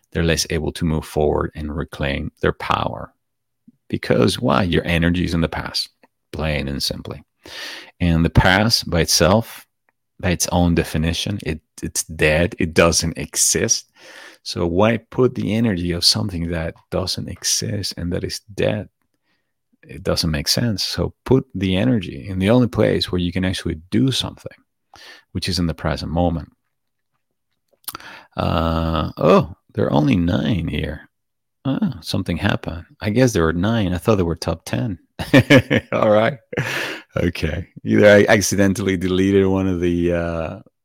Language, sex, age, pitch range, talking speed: English, male, 40-59, 80-95 Hz, 155 wpm